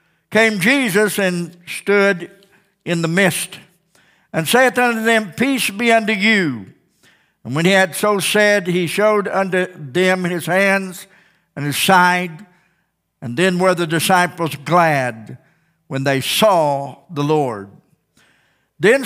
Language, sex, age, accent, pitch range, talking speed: English, male, 60-79, American, 175-215 Hz, 130 wpm